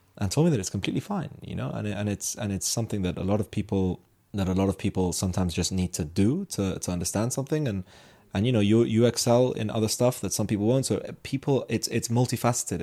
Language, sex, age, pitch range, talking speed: Arabic, male, 20-39, 90-105 Hz, 255 wpm